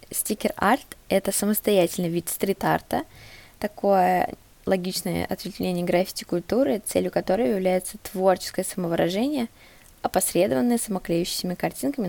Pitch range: 175-210 Hz